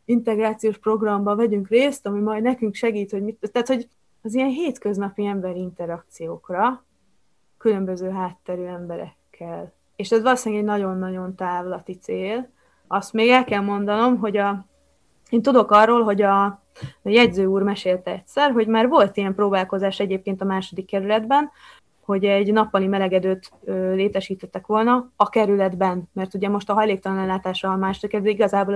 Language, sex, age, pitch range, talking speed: Hungarian, female, 20-39, 190-225 Hz, 140 wpm